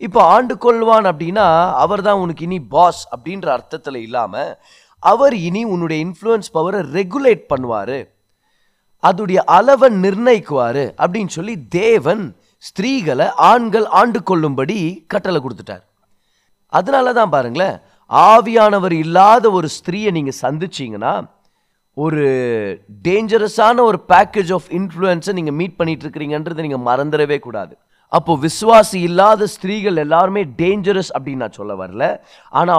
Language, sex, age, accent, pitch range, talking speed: Tamil, male, 30-49, native, 160-220 Hz, 115 wpm